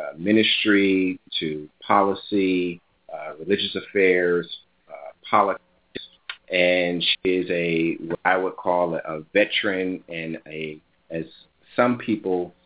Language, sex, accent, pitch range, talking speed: English, male, American, 85-95 Hz, 115 wpm